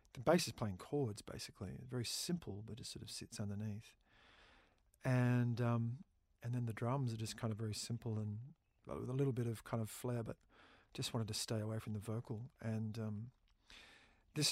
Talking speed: 205 wpm